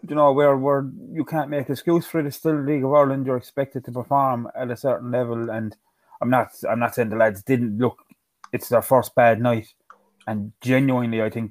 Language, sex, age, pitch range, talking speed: English, male, 20-39, 120-145 Hz, 225 wpm